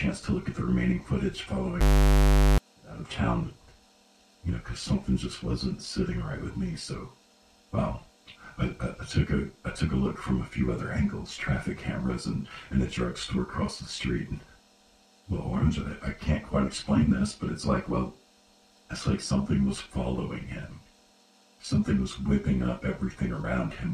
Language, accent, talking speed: English, American, 180 wpm